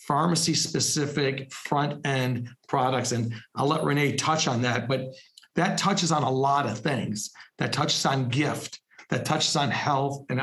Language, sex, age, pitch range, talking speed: English, male, 50-69, 130-160 Hz, 155 wpm